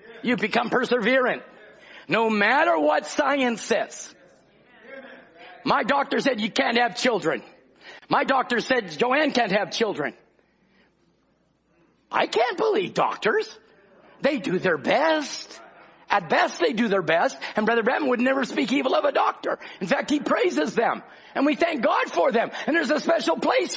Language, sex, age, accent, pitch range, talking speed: English, male, 50-69, American, 235-335 Hz, 155 wpm